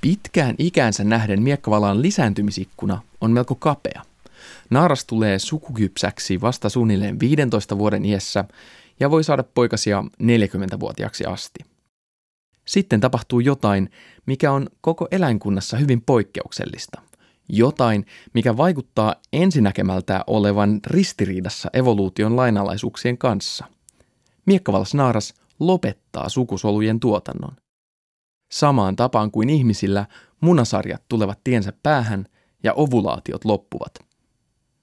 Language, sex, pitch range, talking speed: Finnish, male, 105-135 Hz, 95 wpm